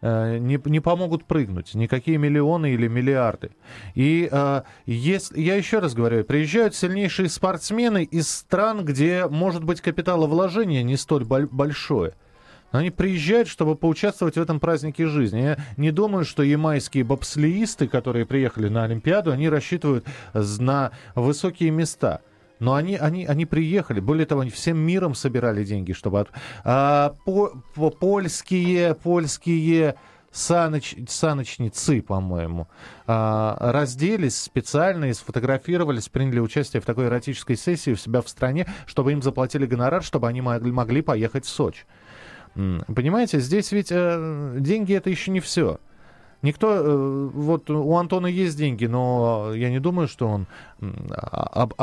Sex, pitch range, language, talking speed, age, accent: male, 125-170 Hz, Russian, 140 wpm, 20-39, native